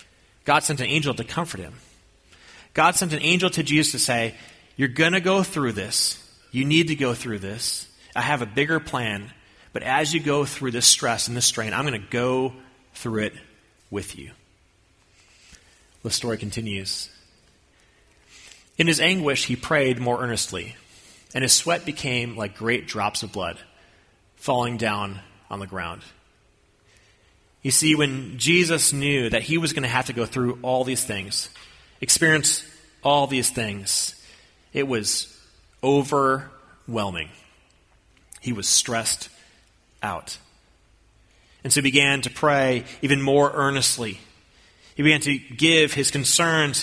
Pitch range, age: 105-145 Hz, 30-49